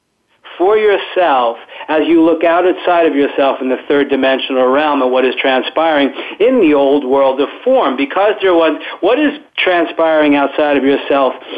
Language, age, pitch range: English, 50-69, 140-170 Hz